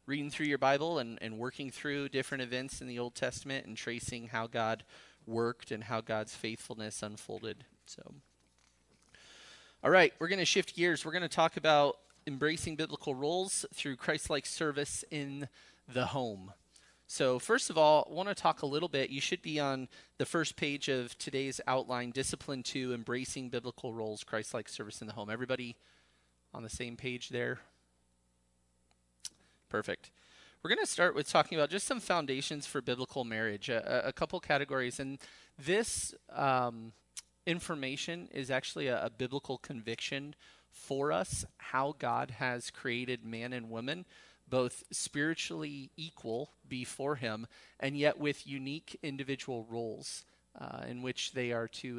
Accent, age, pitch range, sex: American, 30-49, 115-145 Hz, male